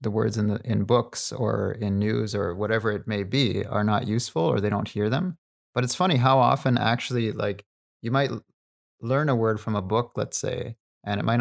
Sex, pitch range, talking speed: male, 105-120 Hz, 220 wpm